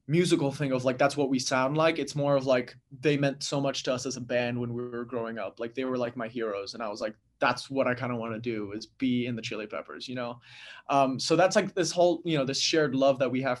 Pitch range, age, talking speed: 125-140 Hz, 20-39, 295 wpm